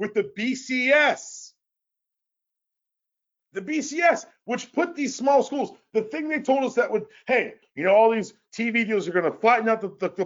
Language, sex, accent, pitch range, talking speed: English, male, American, 200-260 Hz, 185 wpm